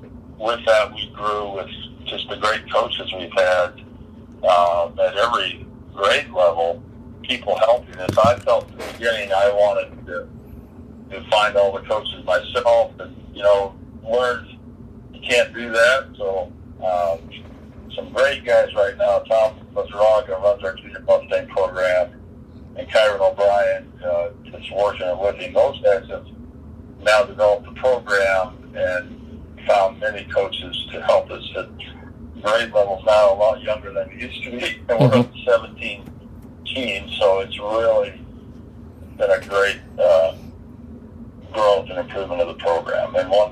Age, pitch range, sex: 50-69, 95-120 Hz, male